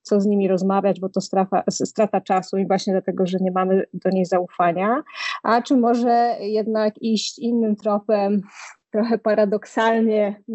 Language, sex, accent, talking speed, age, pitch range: Polish, female, native, 155 wpm, 20-39, 200-230 Hz